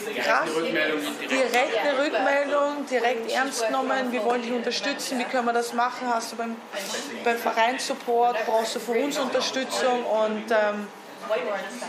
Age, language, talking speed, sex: 20-39, German, 145 wpm, female